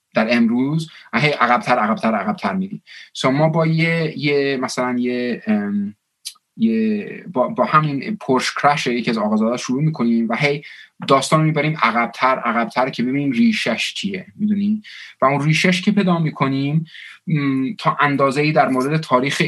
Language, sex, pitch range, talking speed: Persian, male, 125-195 Hz, 155 wpm